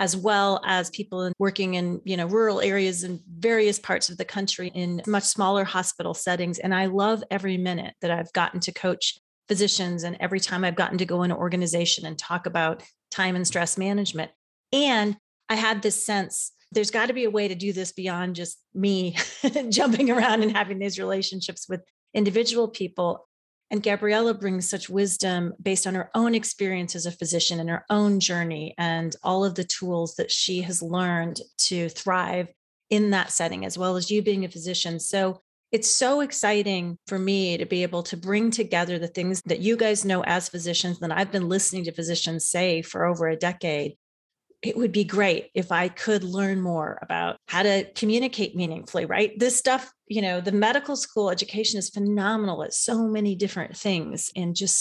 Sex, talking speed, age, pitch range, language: female, 190 wpm, 30-49, 175-210 Hz, English